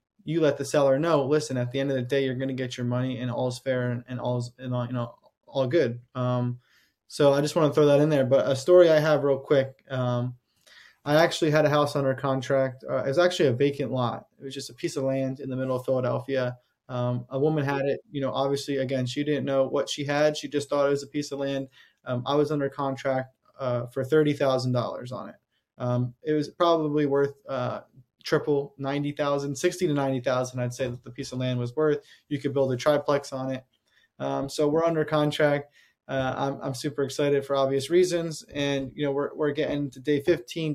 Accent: American